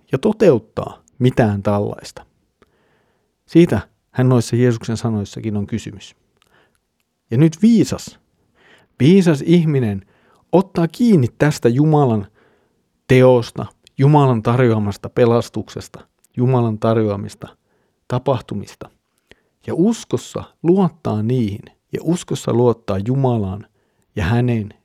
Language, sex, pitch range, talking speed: Finnish, male, 105-130 Hz, 90 wpm